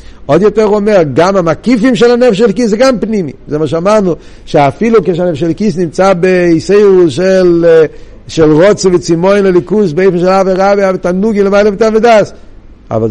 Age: 50-69